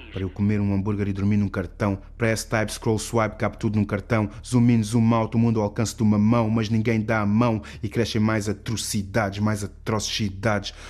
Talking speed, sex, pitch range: 215 wpm, male, 100-125 Hz